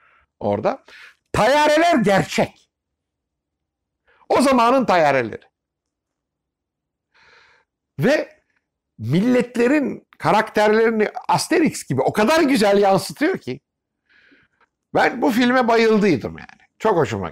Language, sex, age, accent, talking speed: Turkish, male, 60-79, native, 80 wpm